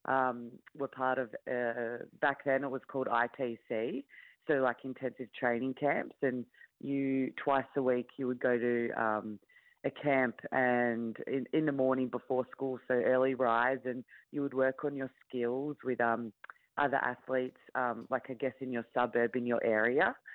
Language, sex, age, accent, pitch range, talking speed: English, female, 20-39, Australian, 120-135 Hz, 175 wpm